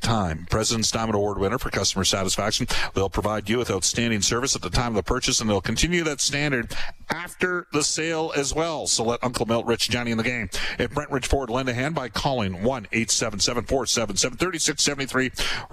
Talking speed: 185 wpm